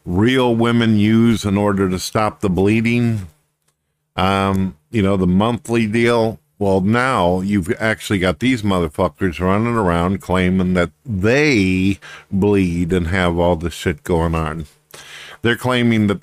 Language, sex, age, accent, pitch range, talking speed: English, male, 50-69, American, 90-115 Hz, 140 wpm